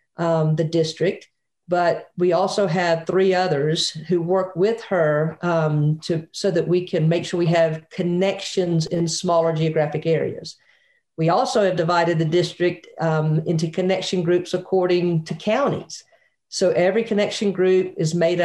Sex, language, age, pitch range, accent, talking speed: female, English, 50-69, 165-190 Hz, American, 155 wpm